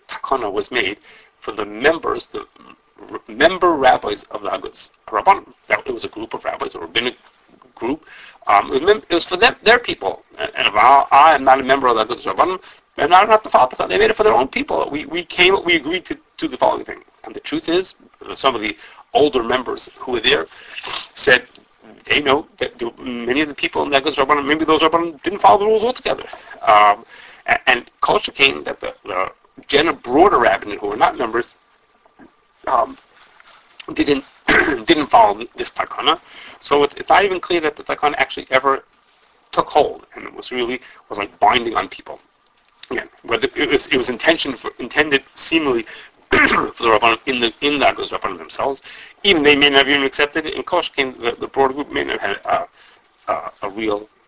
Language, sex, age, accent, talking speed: English, male, 40-59, American, 200 wpm